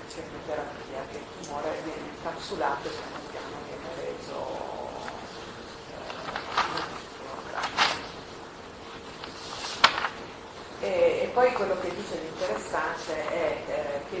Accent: native